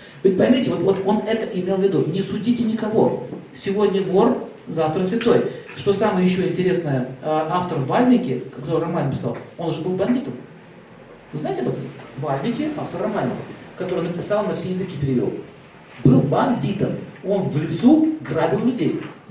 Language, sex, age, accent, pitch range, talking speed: Russian, male, 40-59, native, 140-195 Hz, 155 wpm